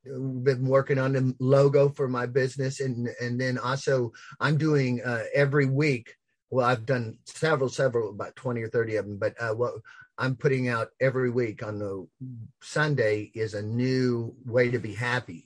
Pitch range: 125-145 Hz